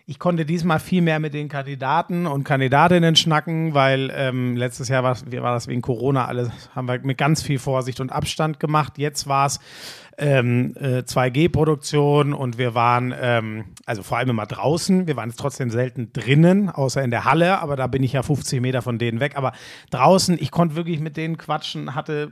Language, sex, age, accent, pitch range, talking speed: German, male, 40-59, German, 135-170 Hz, 190 wpm